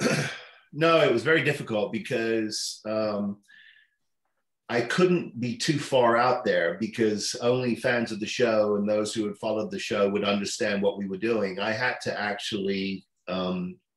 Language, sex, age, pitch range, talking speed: English, male, 40-59, 100-120 Hz, 165 wpm